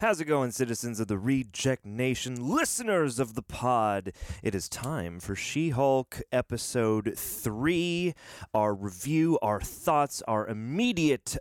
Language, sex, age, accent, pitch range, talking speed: English, male, 30-49, American, 105-145 Hz, 130 wpm